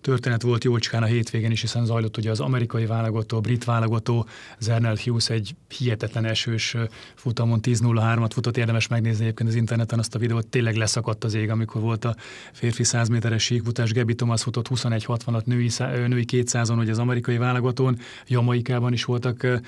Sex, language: male, Hungarian